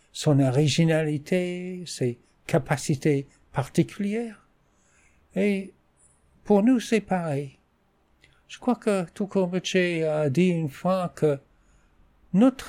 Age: 60-79